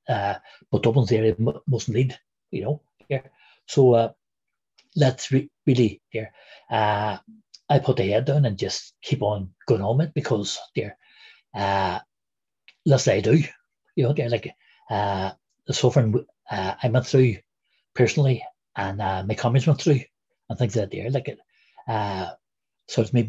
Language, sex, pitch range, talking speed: English, male, 110-140 Hz, 150 wpm